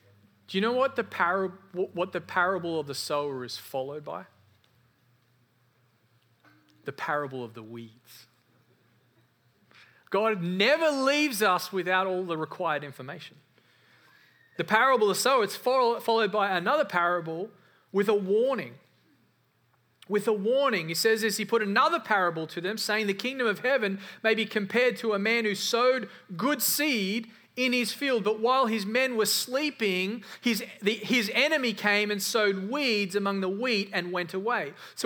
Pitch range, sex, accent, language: 175-235 Hz, male, Australian, English